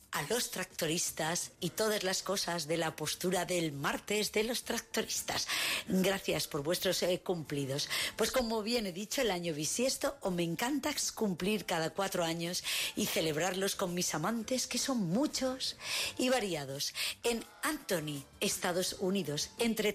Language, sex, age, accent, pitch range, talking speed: Spanish, female, 40-59, Spanish, 180-245 Hz, 150 wpm